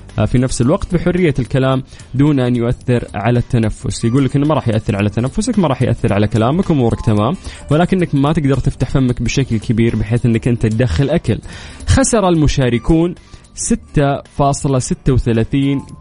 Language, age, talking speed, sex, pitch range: Arabic, 20-39, 150 wpm, male, 115-145 Hz